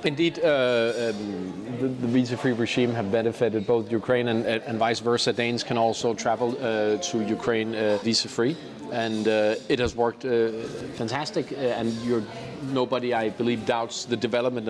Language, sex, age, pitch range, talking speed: Danish, male, 40-59, 115-145 Hz, 150 wpm